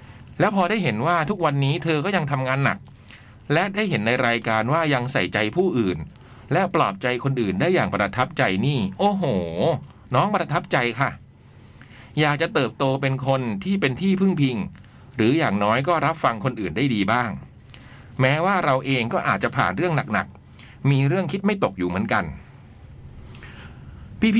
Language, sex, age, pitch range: Thai, male, 60-79, 120-170 Hz